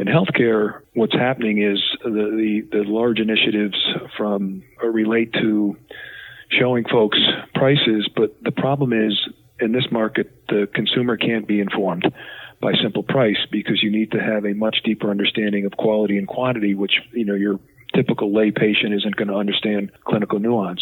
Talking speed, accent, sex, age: 165 wpm, American, male, 40-59